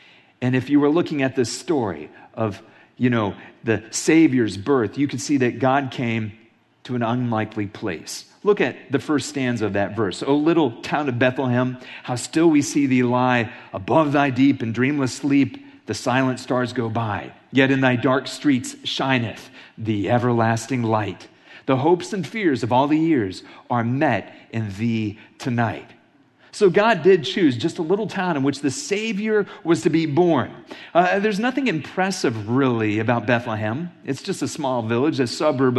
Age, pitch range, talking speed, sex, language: 40-59, 120-155 Hz, 180 wpm, male, English